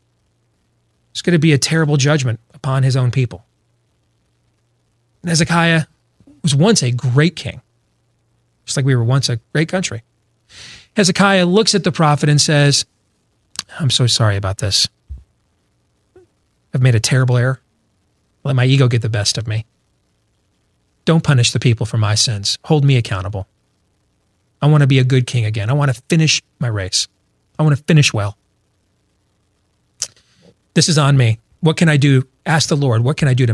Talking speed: 170 wpm